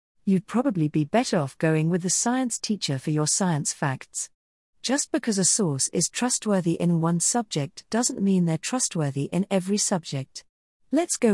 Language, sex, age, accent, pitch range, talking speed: English, female, 40-59, British, 155-210 Hz, 170 wpm